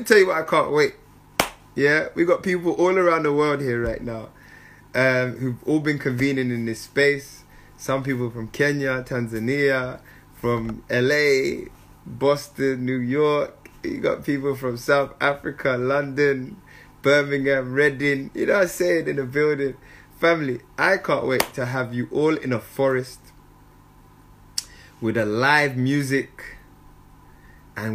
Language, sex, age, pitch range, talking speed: English, male, 20-39, 130-180 Hz, 145 wpm